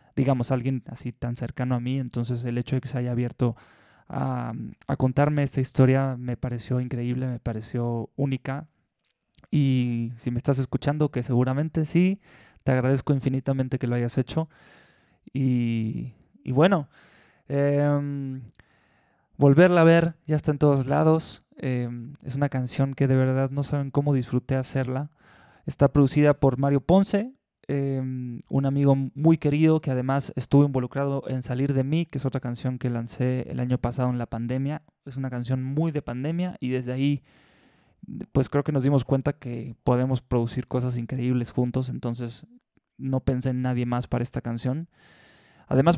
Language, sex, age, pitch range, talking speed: Spanish, male, 20-39, 125-140 Hz, 165 wpm